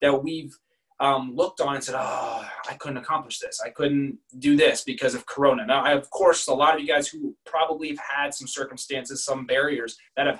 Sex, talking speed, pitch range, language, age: male, 215 wpm, 135-180 Hz, English, 20-39